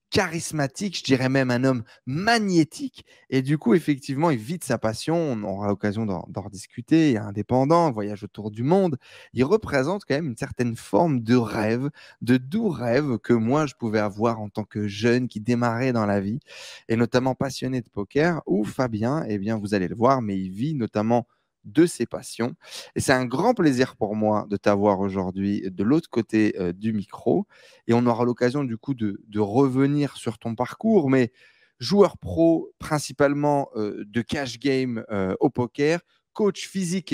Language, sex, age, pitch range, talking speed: French, male, 20-39, 110-160 Hz, 190 wpm